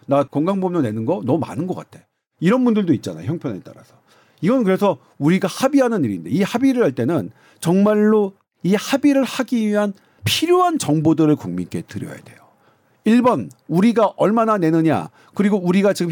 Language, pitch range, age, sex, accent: Korean, 145-210 Hz, 50-69, male, native